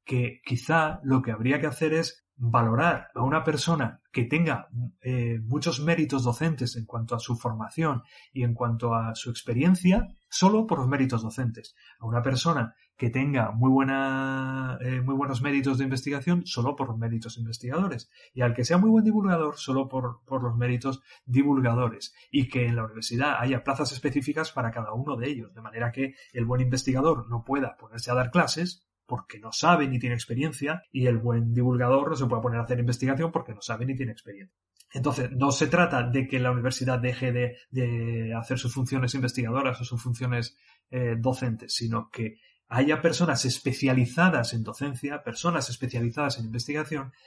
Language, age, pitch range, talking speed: Spanish, 30-49, 120-140 Hz, 185 wpm